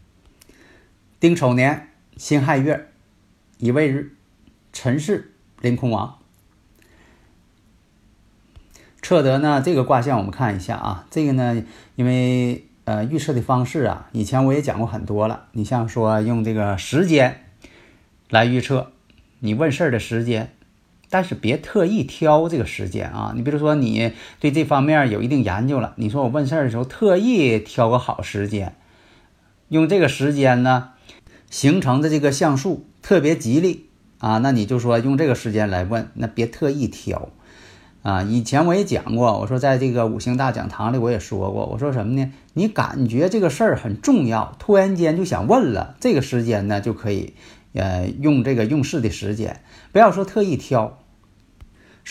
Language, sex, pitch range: Chinese, male, 105-145 Hz